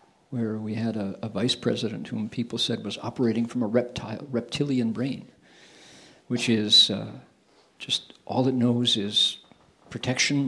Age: 50-69